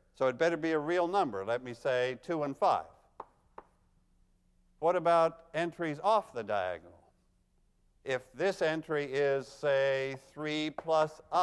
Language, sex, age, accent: English, male, 50-69, American